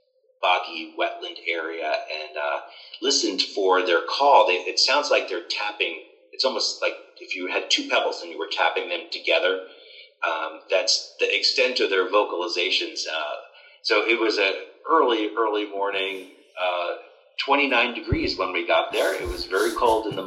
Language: English